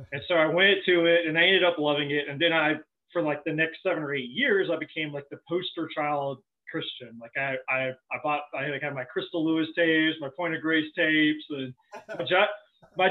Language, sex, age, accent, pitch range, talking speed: English, male, 30-49, American, 130-170 Hz, 230 wpm